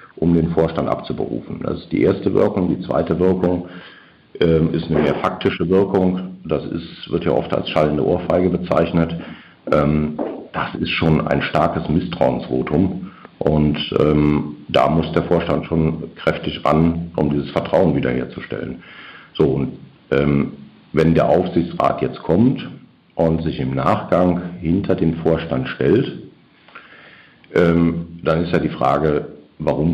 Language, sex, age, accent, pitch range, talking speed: German, male, 60-79, German, 75-85 Hz, 140 wpm